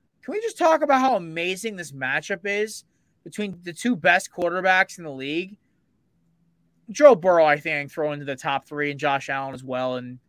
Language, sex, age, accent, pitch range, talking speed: English, male, 30-49, American, 155-195 Hz, 190 wpm